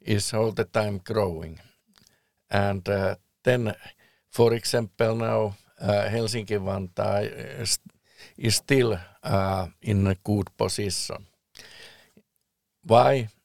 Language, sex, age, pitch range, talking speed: English, male, 50-69, 95-115 Hz, 100 wpm